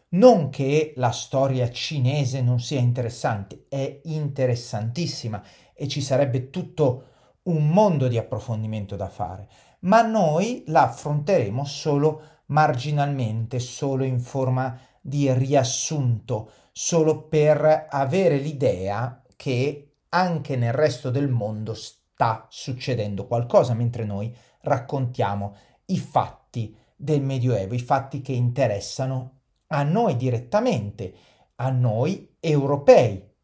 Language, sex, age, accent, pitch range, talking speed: Italian, male, 40-59, native, 115-145 Hz, 110 wpm